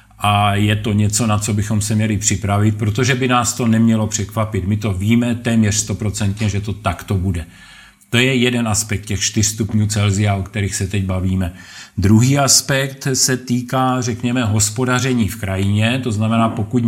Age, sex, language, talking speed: 40-59, male, Czech, 165 wpm